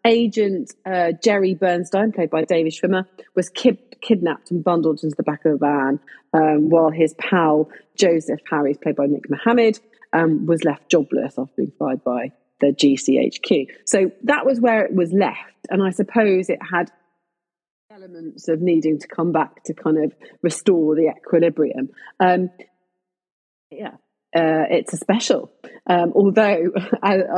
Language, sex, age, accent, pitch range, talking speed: English, female, 30-49, British, 160-195 Hz, 160 wpm